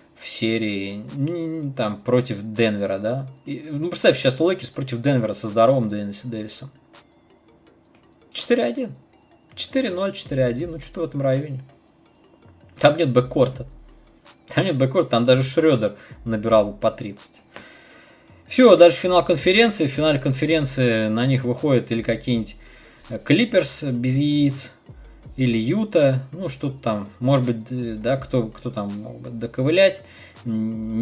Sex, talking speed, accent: male, 125 wpm, native